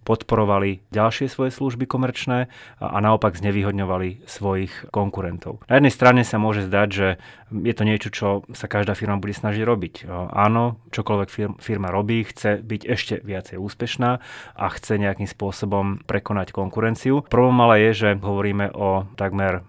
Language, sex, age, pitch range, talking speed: Slovak, male, 30-49, 95-110 Hz, 155 wpm